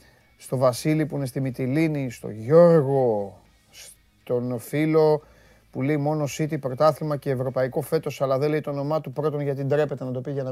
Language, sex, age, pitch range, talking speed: Greek, male, 30-49, 130-155 Hz, 185 wpm